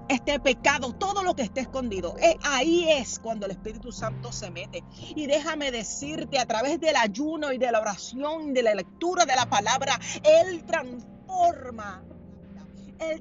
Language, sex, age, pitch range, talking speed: Spanish, female, 40-59, 185-285 Hz, 160 wpm